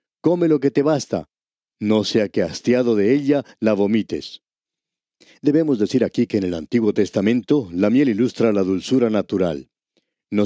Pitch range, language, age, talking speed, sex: 105-150 Hz, Spanish, 50-69, 160 wpm, male